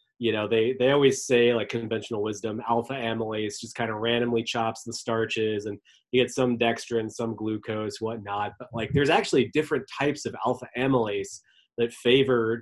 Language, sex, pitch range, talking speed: English, male, 110-130 Hz, 175 wpm